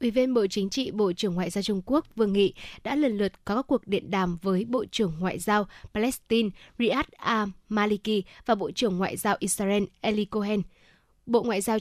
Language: Vietnamese